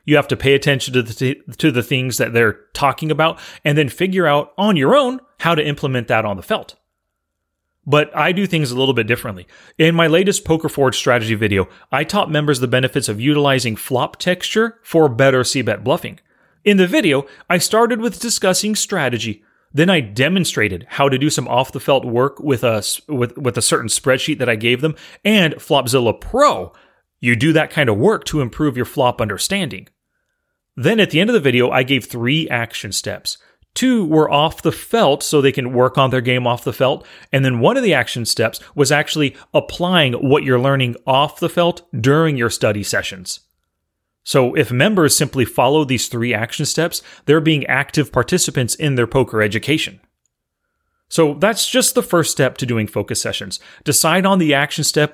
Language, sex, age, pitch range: English, male, 30-49, 120-160 Hz